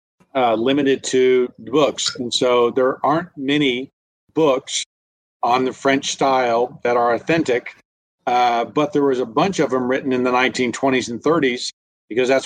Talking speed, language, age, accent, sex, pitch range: 160 wpm, English, 50-69, American, male, 115-130 Hz